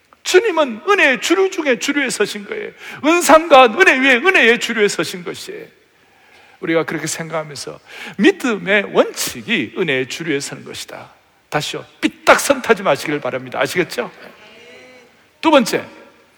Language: Korean